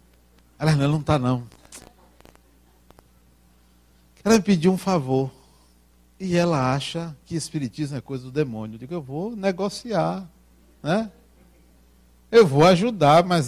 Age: 60-79